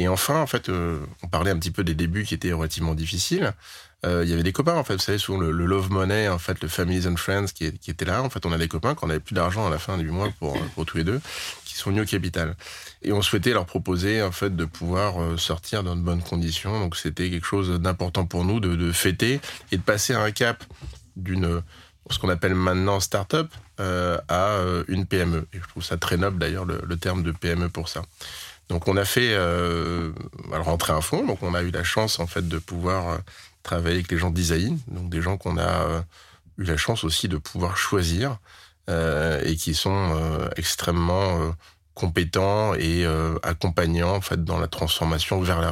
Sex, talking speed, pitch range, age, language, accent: male, 225 wpm, 85-95 Hz, 20-39, French, French